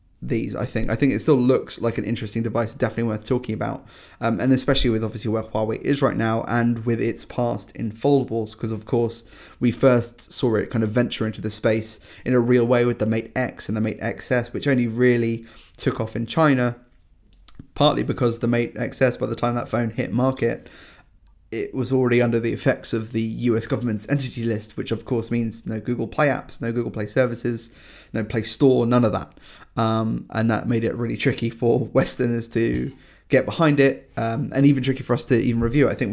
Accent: British